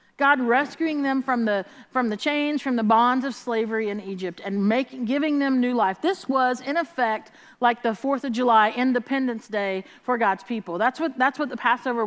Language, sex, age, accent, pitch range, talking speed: English, female, 40-59, American, 205-270 Hz, 205 wpm